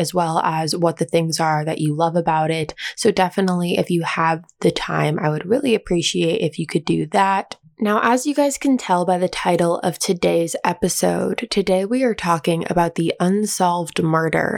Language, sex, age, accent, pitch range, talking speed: English, female, 20-39, American, 160-190 Hz, 200 wpm